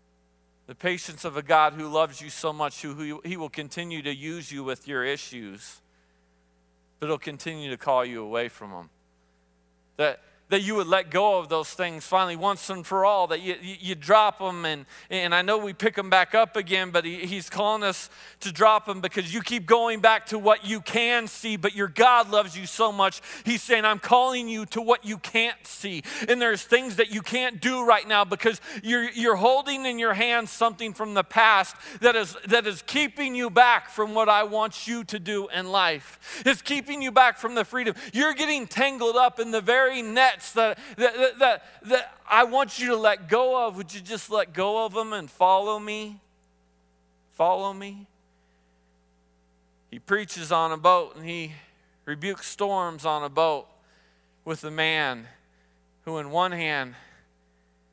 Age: 40-59